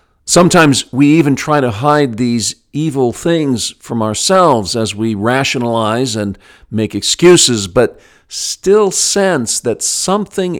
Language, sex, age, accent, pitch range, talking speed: English, male, 50-69, American, 105-135 Hz, 125 wpm